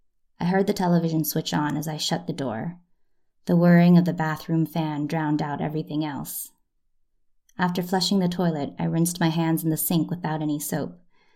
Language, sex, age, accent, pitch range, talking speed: English, female, 20-39, American, 160-185 Hz, 185 wpm